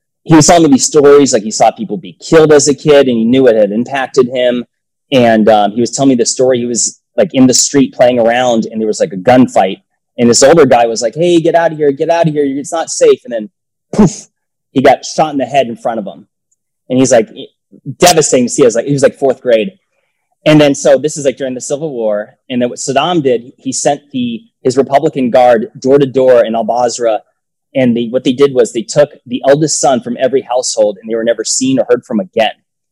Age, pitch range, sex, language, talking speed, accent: 20-39, 130-170 Hz, male, English, 250 wpm, American